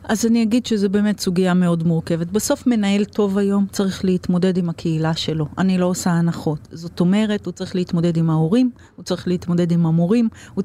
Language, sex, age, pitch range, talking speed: Hebrew, female, 30-49, 180-235 Hz, 190 wpm